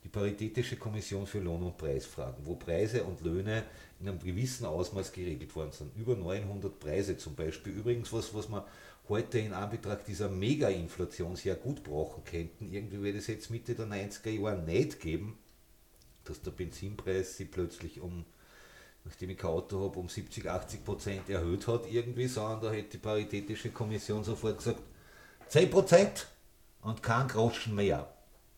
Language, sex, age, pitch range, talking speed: German, male, 50-69, 95-115 Hz, 165 wpm